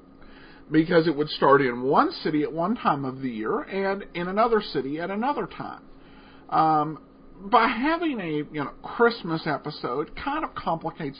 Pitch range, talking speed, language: 160-225 Hz, 165 wpm, English